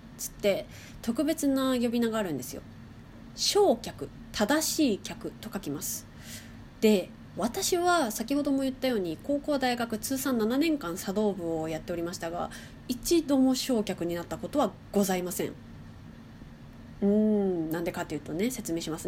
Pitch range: 185-275 Hz